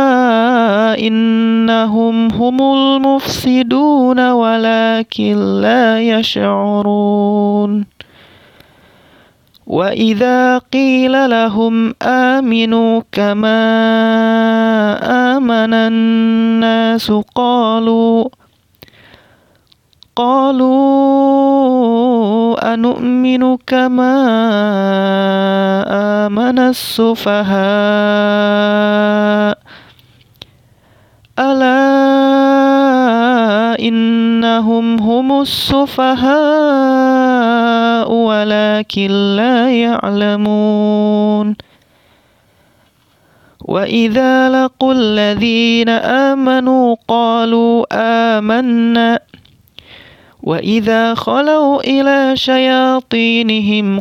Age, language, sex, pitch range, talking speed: 20-39, Indonesian, male, 210-255 Hz, 45 wpm